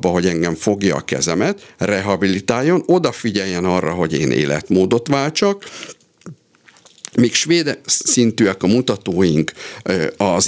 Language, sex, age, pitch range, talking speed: Hungarian, male, 50-69, 95-125 Hz, 110 wpm